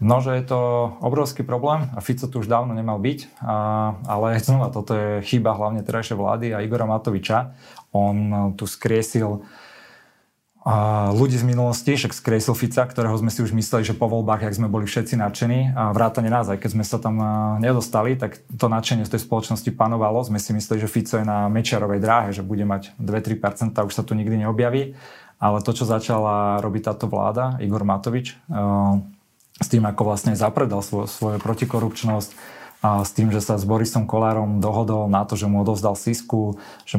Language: Slovak